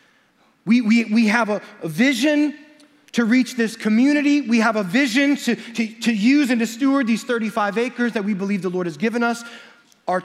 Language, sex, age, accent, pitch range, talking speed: English, male, 30-49, American, 165-225 Hz, 195 wpm